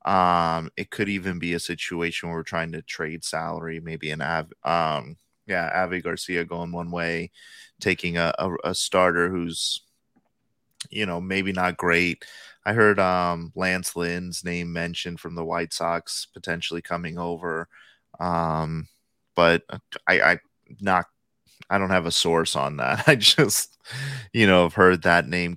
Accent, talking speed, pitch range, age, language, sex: American, 160 wpm, 85-95 Hz, 30-49, English, male